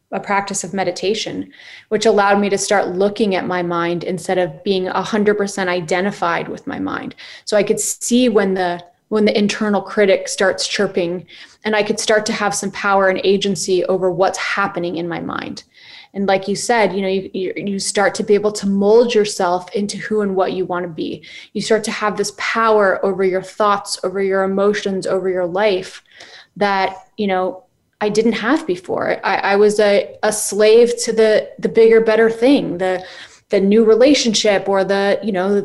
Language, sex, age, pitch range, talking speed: English, female, 20-39, 195-230 Hz, 195 wpm